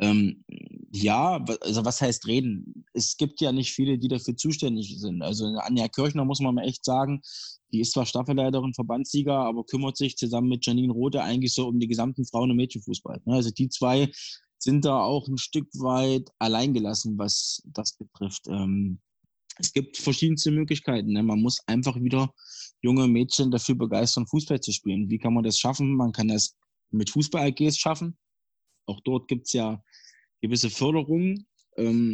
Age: 20-39